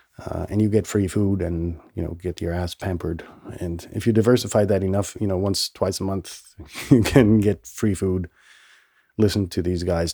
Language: English